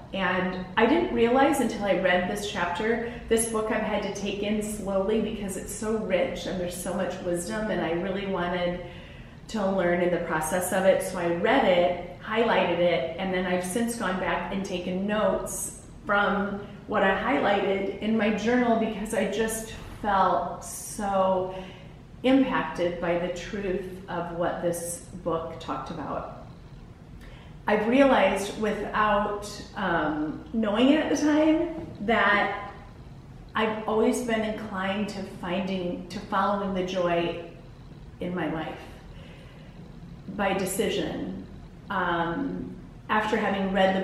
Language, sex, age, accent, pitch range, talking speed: English, female, 30-49, American, 180-215 Hz, 140 wpm